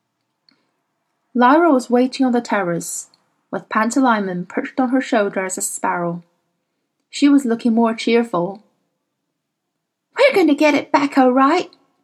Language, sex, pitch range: Chinese, female, 185-265 Hz